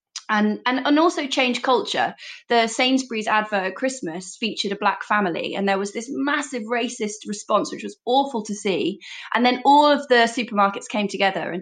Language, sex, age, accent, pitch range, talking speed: English, female, 20-39, British, 190-250 Hz, 180 wpm